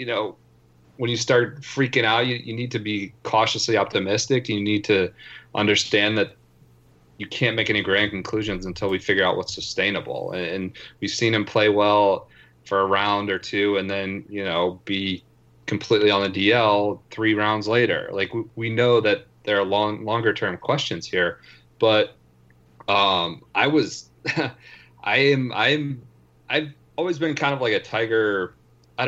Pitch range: 95-120 Hz